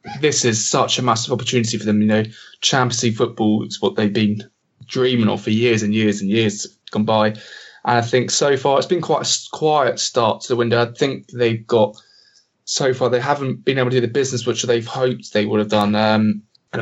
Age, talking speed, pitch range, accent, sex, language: 20-39, 230 wpm, 110-120 Hz, British, male, English